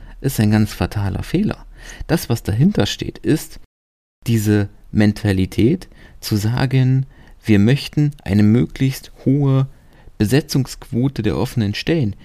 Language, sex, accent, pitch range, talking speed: German, male, German, 100-135 Hz, 115 wpm